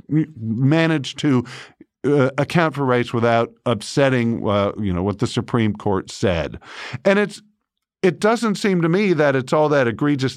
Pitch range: 115-155 Hz